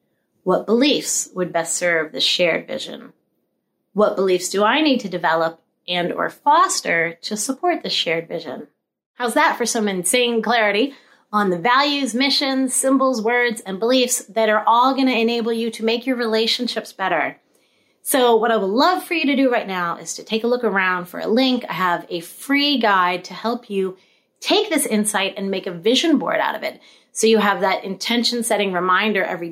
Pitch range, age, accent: 185-255 Hz, 30-49, American